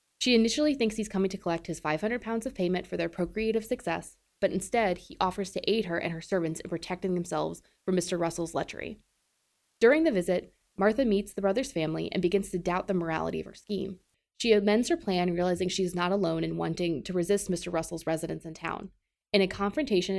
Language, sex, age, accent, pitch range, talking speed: English, female, 20-39, American, 175-220 Hz, 210 wpm